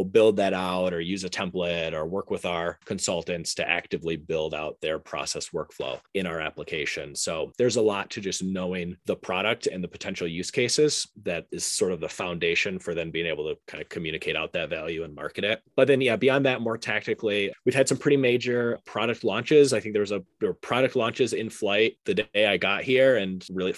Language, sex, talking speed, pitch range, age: English, male, 220 wpm, 90-140 Hz, 30-49